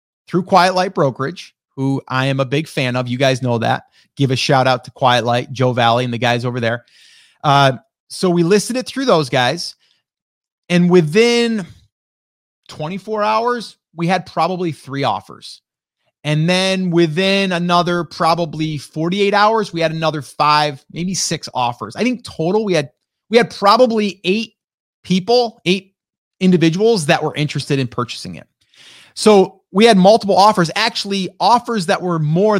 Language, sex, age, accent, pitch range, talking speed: English, male, 30-49, American, 135-195 Hz, 160 wpm